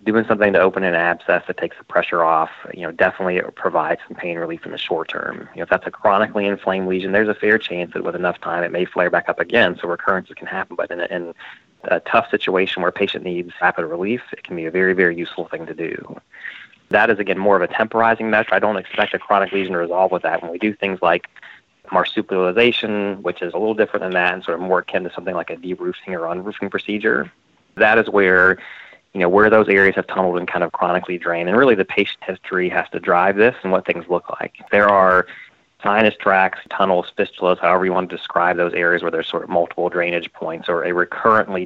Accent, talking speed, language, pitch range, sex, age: American, 240 wpm, English, 85-100 Hz, male, 30-49